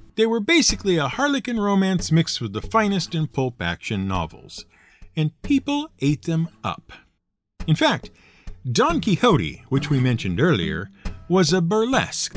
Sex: male